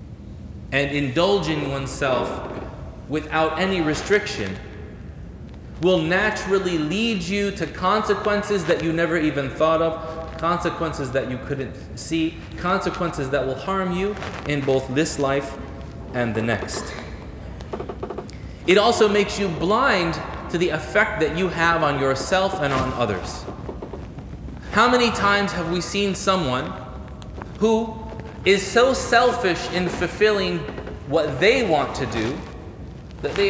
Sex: male